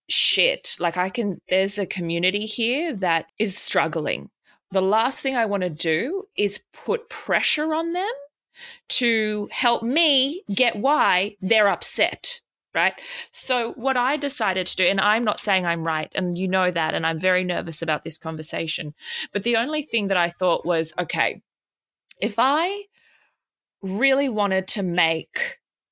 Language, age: English, 20-39